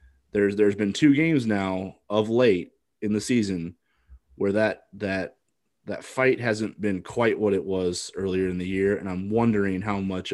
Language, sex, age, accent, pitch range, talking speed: English, male, 20-39, American, 90-105 Hz, 180 wpm